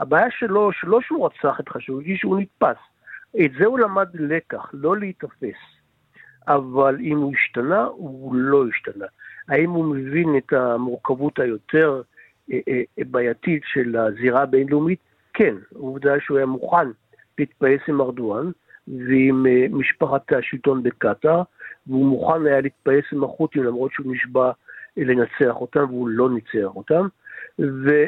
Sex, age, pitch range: male, 60-79, 130-165 Hz